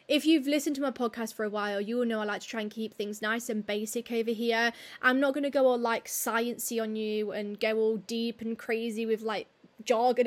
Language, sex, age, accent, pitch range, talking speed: English, female, 20-39, British, 225-275 Hz, 245 wpm